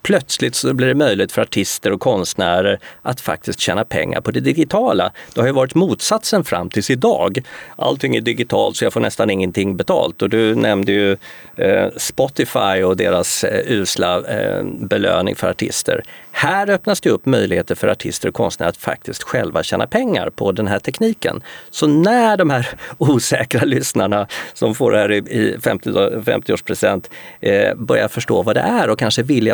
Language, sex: Swedish, male